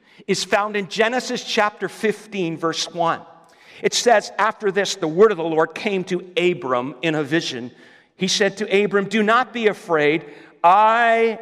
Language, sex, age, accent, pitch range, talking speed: English, male, 50-69, American, 180-220 Hz, 170 wpm